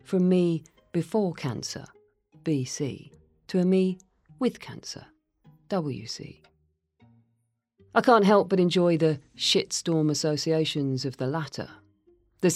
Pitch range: 130-165 Hz